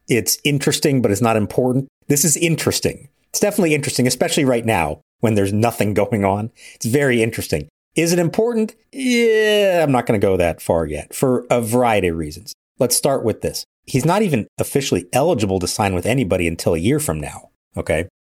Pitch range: 95-130 Hz